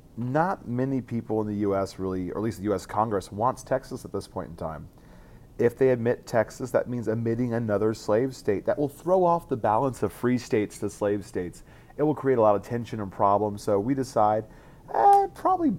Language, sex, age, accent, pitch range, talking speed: English, male, 30-49, American, 105-135 Hz, 215 wpm